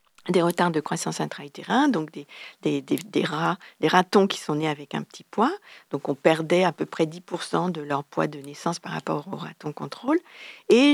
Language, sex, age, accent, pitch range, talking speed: French, female, 50-69, French, 170-230 Hz, 215 wpm